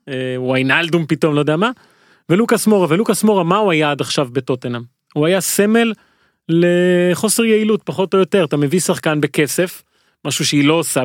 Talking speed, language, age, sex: 170 wpm, Hebrew, 30-49, male